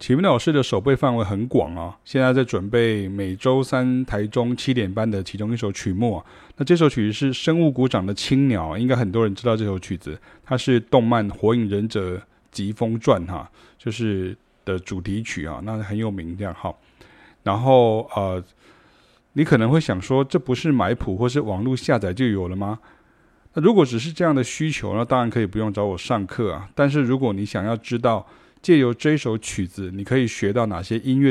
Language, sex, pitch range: Chinese, male, 100-130 Hz